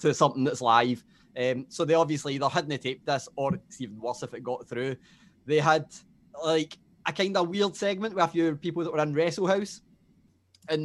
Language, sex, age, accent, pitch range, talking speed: English, male, 20-39, British, 140-180 Hz, 210 wpm